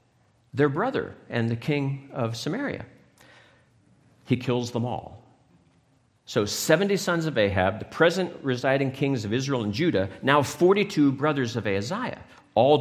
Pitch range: 100-130 Hz